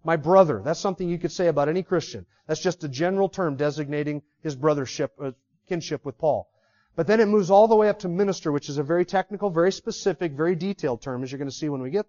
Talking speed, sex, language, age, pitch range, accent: 245 wpm, male, English, 40-59, 165-215 Hz, American